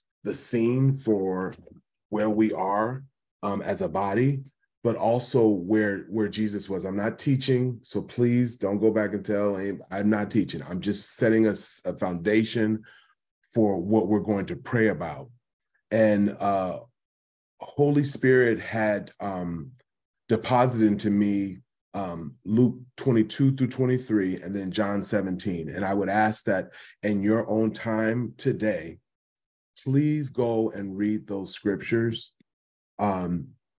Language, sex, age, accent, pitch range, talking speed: English, male, 30-49, American, 100-120 Hz, 140 wpm